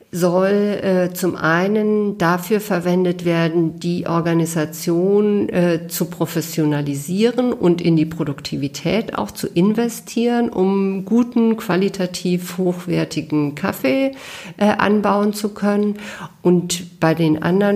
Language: German